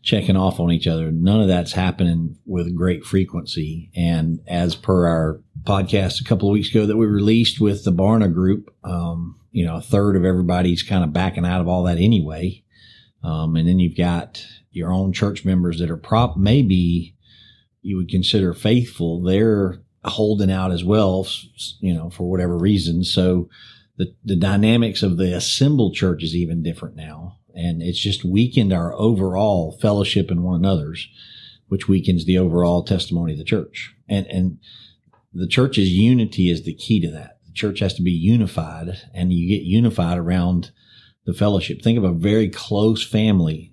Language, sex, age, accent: English, male, 40-59, American